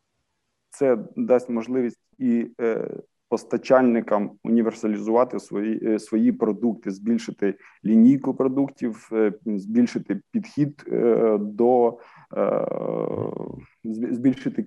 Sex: male